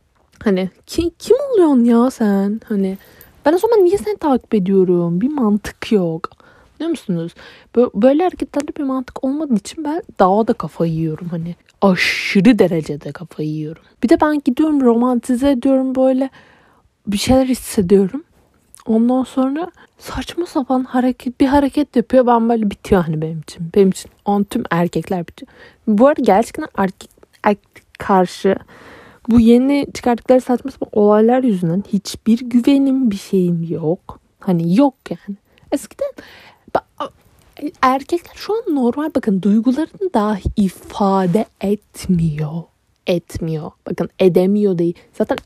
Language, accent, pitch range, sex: Turkish, native, 190-265 Hz, female